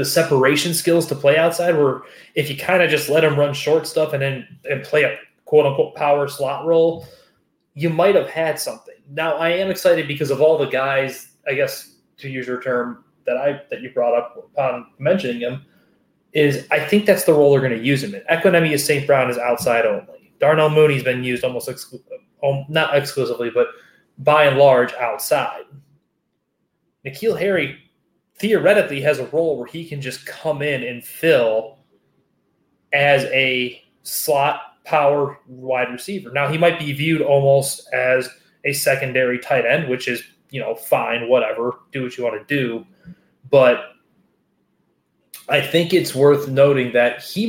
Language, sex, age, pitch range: English, male, 20-39, 130-165 Hz